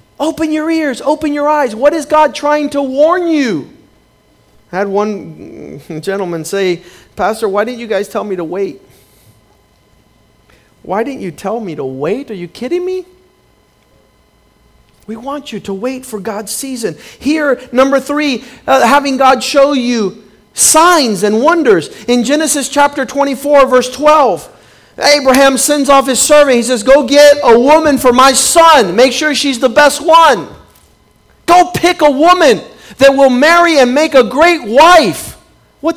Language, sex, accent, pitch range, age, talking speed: English, male, American, 250-310 Hz, 50-69, 160 wpm